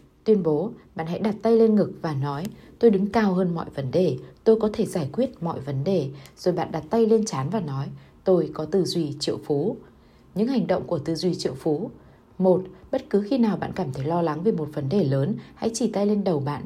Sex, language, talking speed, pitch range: female, Vietnamese, 245 wpm, 145-205 Hz